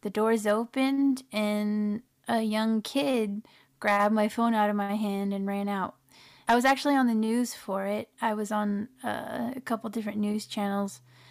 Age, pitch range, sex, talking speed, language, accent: 30-49, 210-245 Hz, female, 175 wpm, English, American